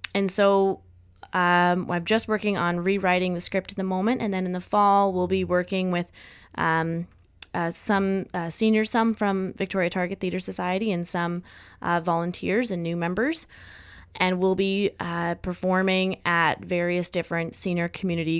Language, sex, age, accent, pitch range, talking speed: English, female, 20-39, American, 175-195 Hz, 165 wpm